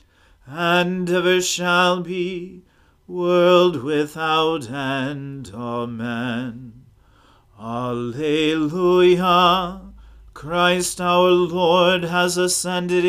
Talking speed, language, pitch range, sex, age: 65 wpm, English, 150-175 Hz, male, 40-59